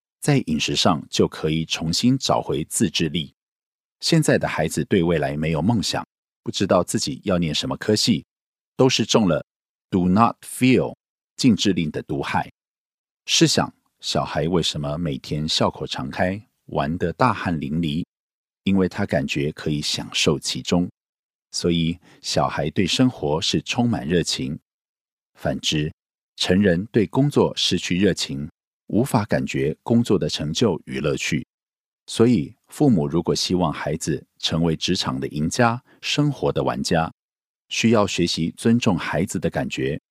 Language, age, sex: Korean, 50-69, male